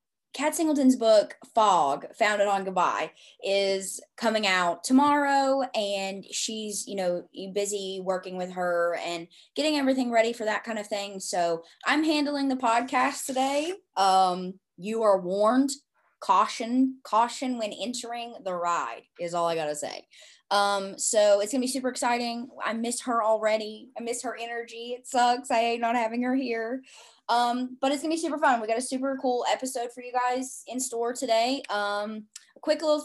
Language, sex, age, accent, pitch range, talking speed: English, female, 20-39, American, 195-260 Hz, 170 wpm